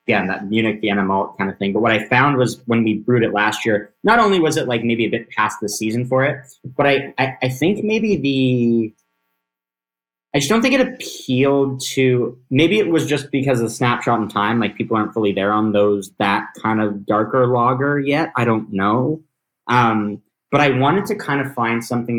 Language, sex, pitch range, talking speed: English, male, 100-130 Hz, 220 wpm